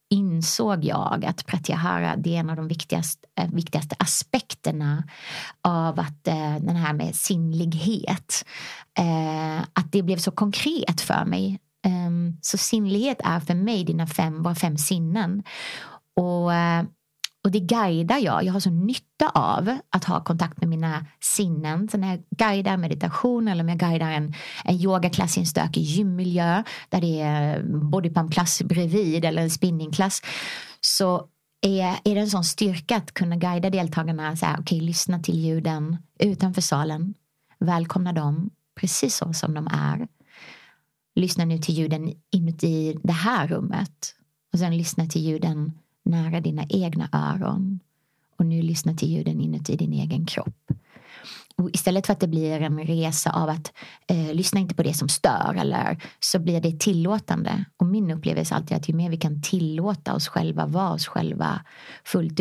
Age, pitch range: 30-49, 160-190 Hz